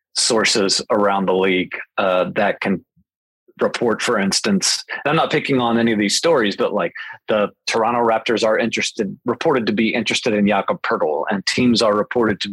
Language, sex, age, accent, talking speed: English, male, 40-59, American, 180 wpm